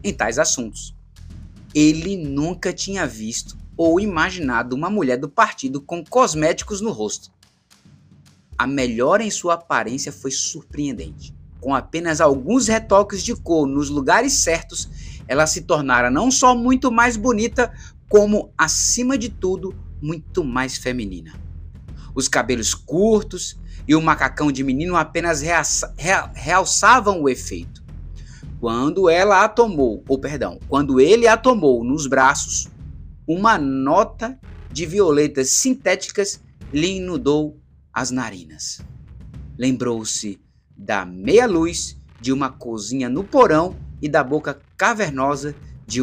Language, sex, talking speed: Portuguese, male, 125 wpm